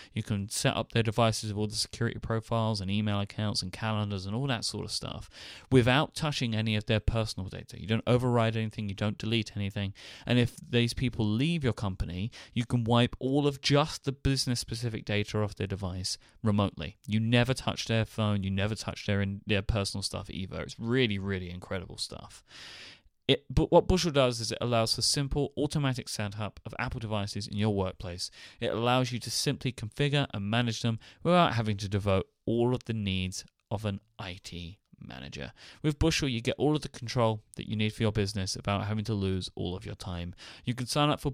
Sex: male